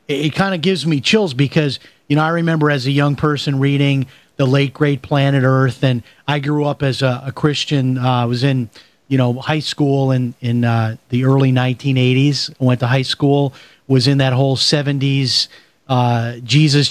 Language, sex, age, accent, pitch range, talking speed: English, male, 40-59, American, 135-170 Hz, 200 wpm